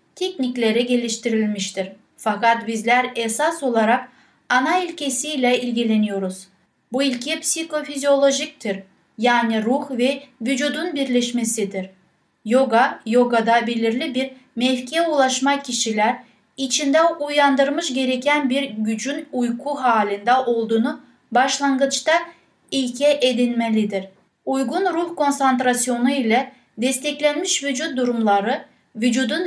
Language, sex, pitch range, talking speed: Turkish, female, 230-285 Hz, 90 wpm